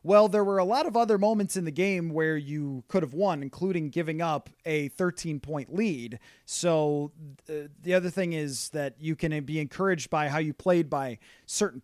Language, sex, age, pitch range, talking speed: English, male, 30-49, 150-190 Hz, 195 wpm